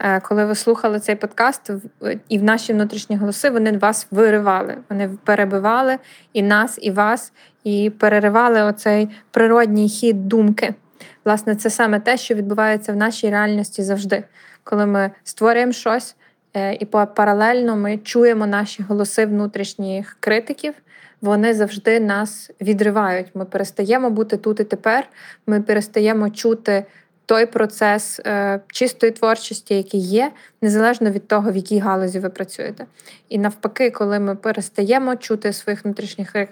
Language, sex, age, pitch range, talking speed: Ukrainian, female, 20-39, 205-225 Hz, 135 wpm